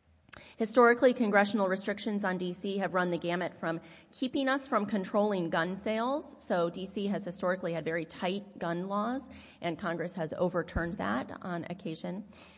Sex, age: female, 30-49